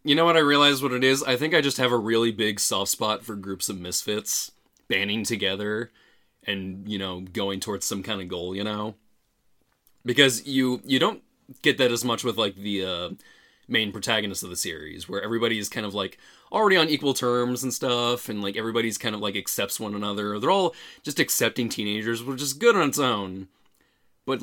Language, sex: English, male